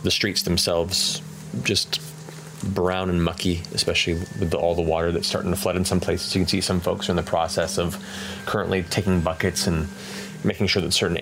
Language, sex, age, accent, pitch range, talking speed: English, male, 30-49, American, 90-105 Hz, 200 wpm